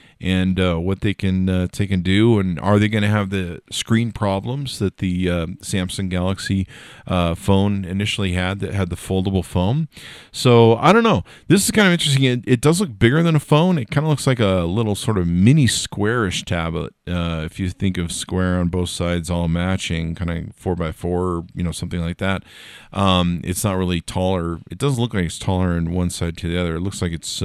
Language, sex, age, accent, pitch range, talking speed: English, male, 40-59, American, 90-115 Hz, 225 wpm